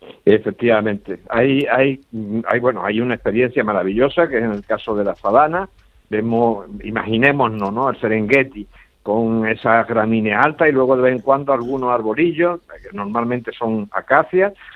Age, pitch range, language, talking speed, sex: 60-79, 110-150 Hz, Spanish, 150 wpm, male